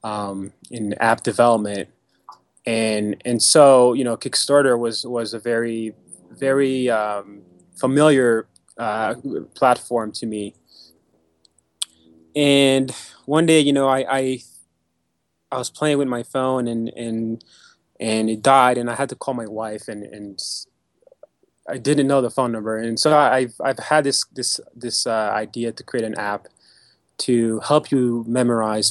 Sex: male